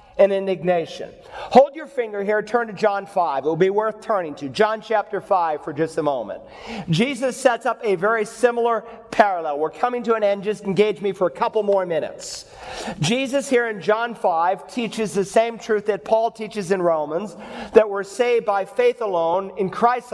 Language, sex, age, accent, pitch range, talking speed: English, male, 40-59, American, 200-245 Hz, 195 wpm